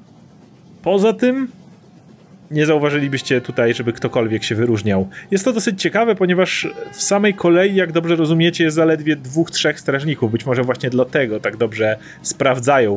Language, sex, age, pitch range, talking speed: Polish, male, 30-49, 125-180 Hz, 150 wpm